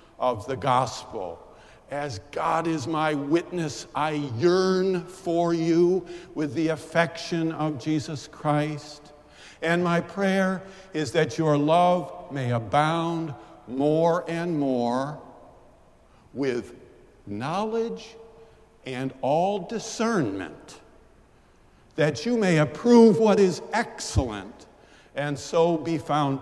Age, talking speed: 50-69, 105 wpm